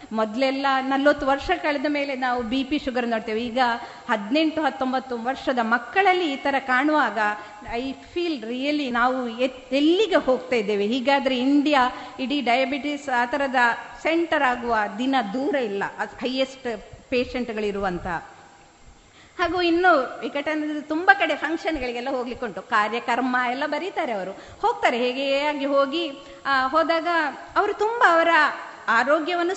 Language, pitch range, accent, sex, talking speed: Kannada, 250-335 Hz, native, female, 125 wpm